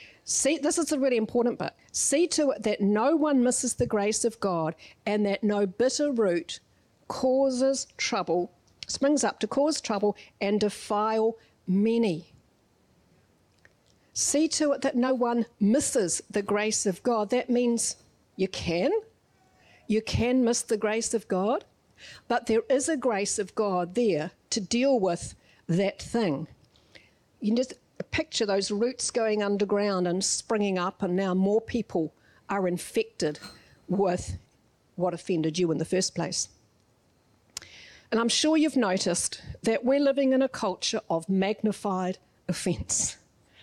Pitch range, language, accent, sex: 190-255 Hz, English, Australian, female